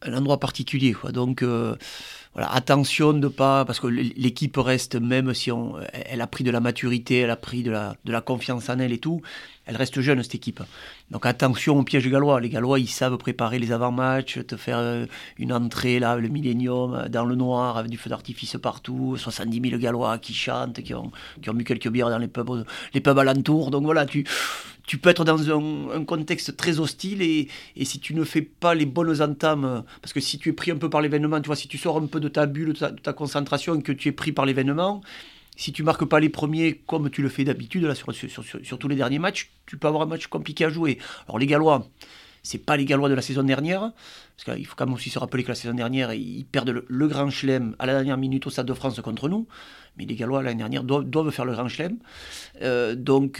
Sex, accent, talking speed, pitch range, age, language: male, French, 245 wpm, 125-150 Hz, 30-49, French